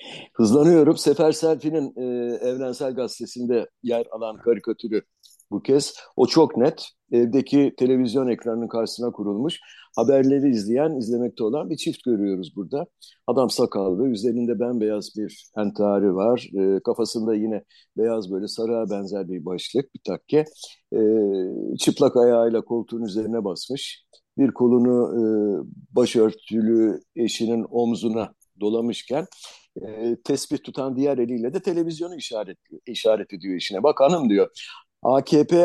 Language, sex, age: Turkish, male, 60-79